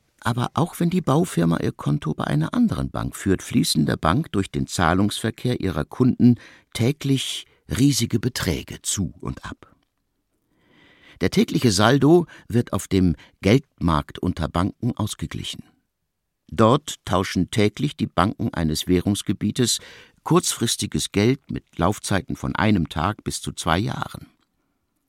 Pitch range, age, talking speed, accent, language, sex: 85-120 Hz, 60-79, 130 wpm, German, German, male